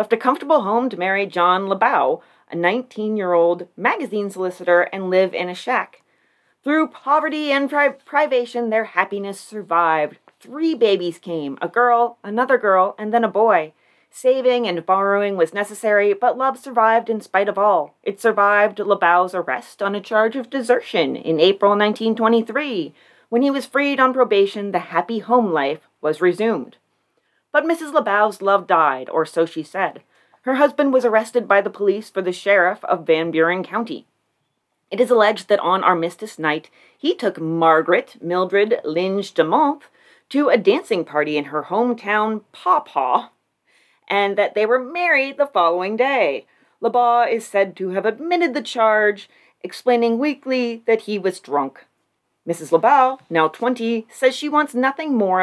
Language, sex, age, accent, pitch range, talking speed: English, female, 30-49, American, 185-250 Hz, 160 wpm